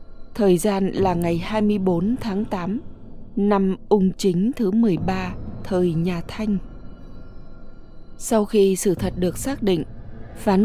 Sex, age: female, 20-39